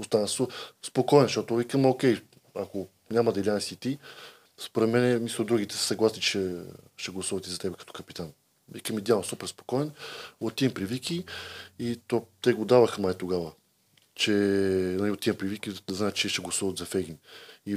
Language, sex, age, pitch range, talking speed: Bulgarian, male, 20-39, 100-120 Hz, 175 wpm